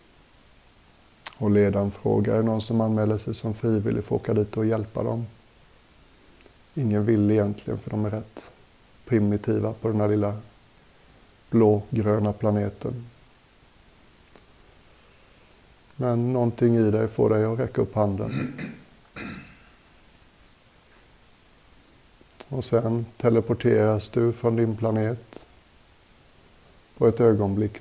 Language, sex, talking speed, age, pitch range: Swedish, male, 110 wpm, 60-79, 105-115 Hz